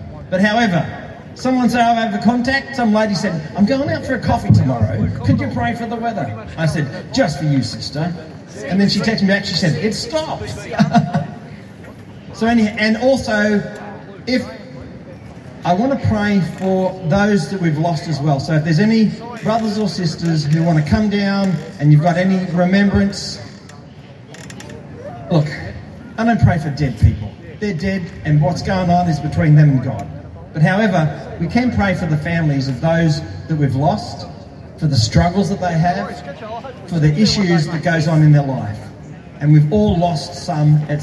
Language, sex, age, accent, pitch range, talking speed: English, male, 30-49, Australian, 145-195 Hz, 185 wpm